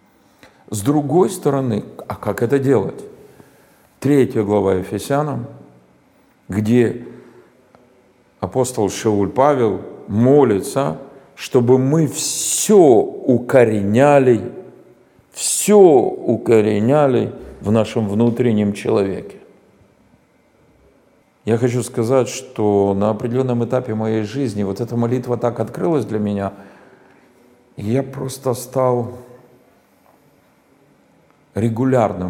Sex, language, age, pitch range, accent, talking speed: male, Russian, 50-69, 105-130 Hz, native, 85 wpm